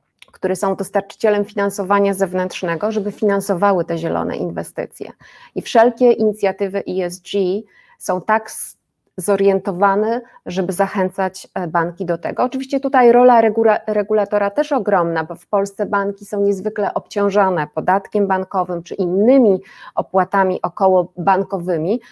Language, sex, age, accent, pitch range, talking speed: Polish, female, 30-49, native, 185-220 Hz, 110 wpm